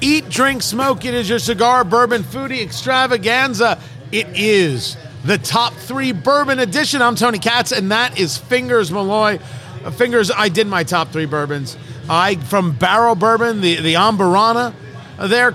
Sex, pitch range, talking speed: male, 155-225 Hz, 155 wpm